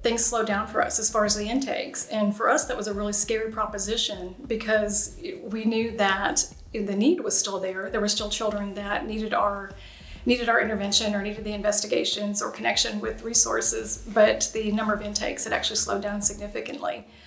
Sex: female